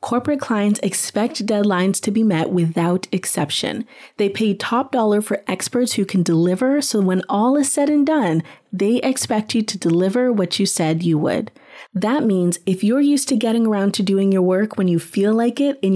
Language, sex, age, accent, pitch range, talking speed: English, female, 30-49, American, 185-245 Hz, 200 wpm